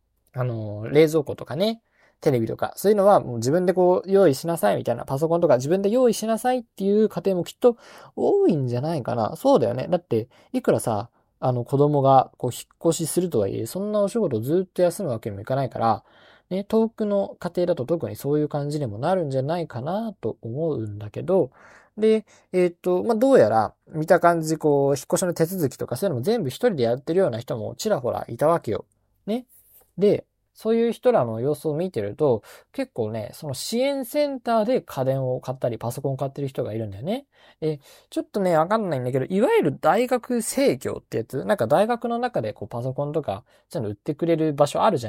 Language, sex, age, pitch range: Japanese, male, 20-39, 130-215 Hz